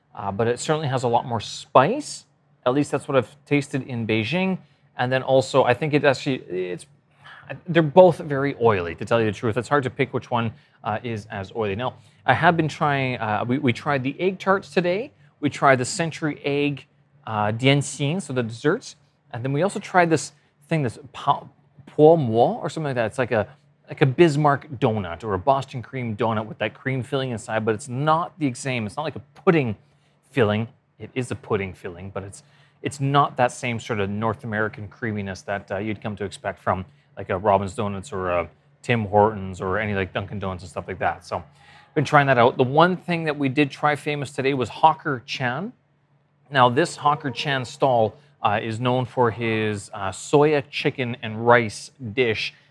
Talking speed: 210 wpm